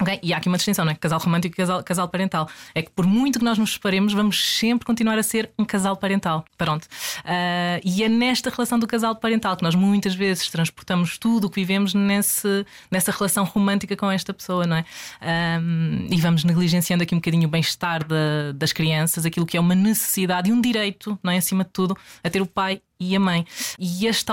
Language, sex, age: Portuguese, female, 20-39